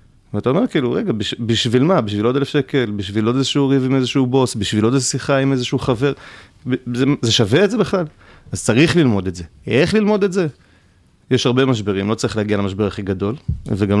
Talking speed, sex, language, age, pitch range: 225 wpm, male, Hebrew, 30-49, 105-130 Hz